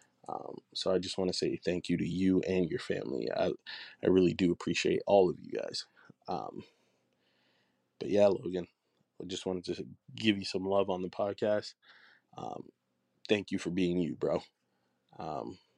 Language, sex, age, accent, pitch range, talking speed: English, male, 20-39, American, 90-115 Hz, 175 wpm